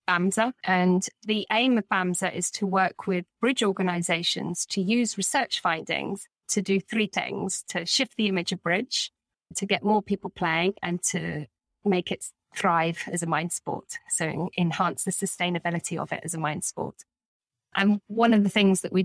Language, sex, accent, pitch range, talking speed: English, female, British, 170-205 Hz, 175 wpm